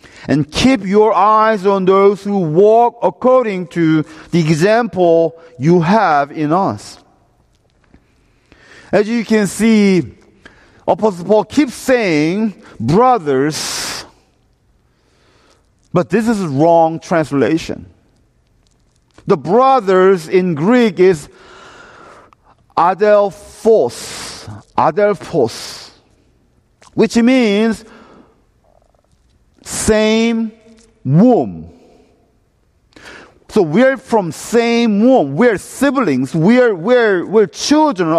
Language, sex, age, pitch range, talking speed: English, male, 50-69, 165-235 Hz, 85 wpm